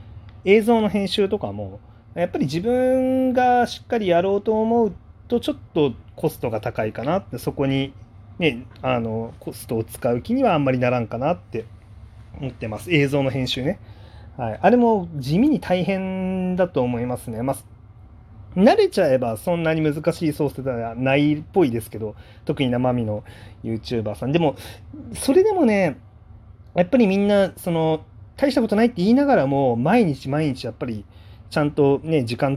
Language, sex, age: Japanese, male, 30-49